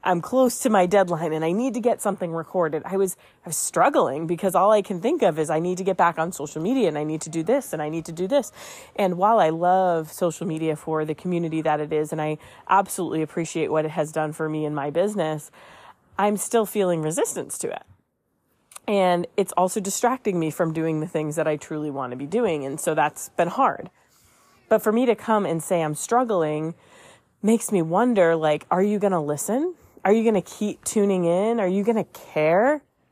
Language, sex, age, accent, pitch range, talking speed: English, female, 30-49, American, 160-215 Hz, 225 wpm